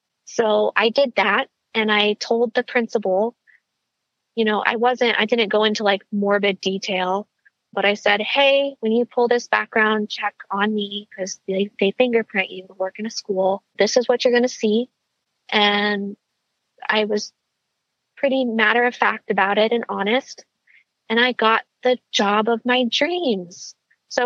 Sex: female